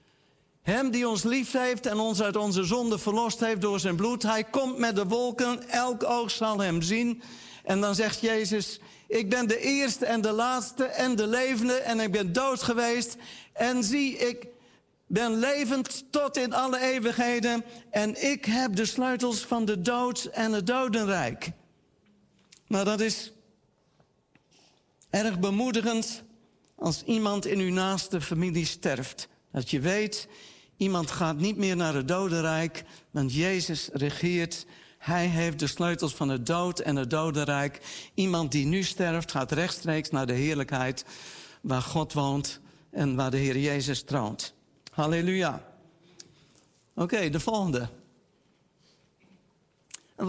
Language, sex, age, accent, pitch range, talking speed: Dutch, male, 50-69, Dutch, 175-235 Hz, 145 wpm